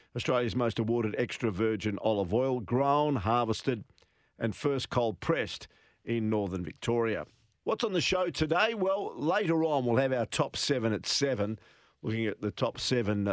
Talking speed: 160 wpm